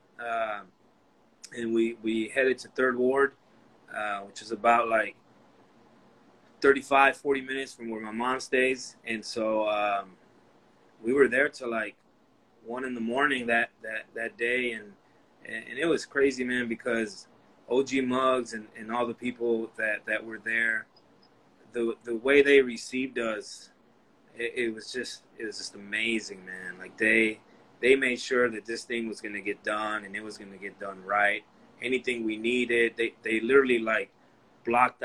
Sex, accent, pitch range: male, American, 105-125 Hz